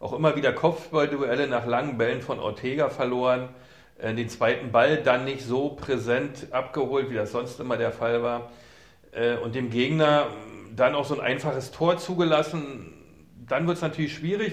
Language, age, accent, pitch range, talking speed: German, 40-59, German, 120-150 Hz, 175 wpm